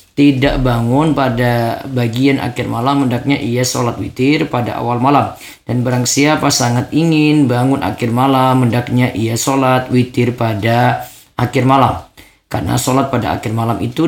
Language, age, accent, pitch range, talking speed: Indonesian, 20-39, native, 115-140 Hz, 145 wpm